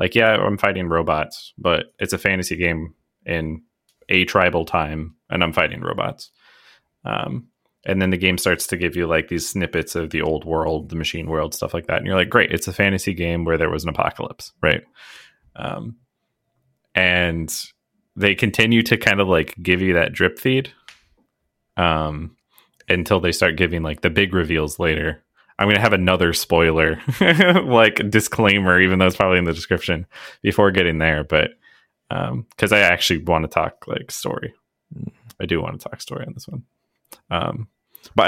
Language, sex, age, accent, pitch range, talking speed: English, male, 20-39, American, 80-100 Hz, 180 wpm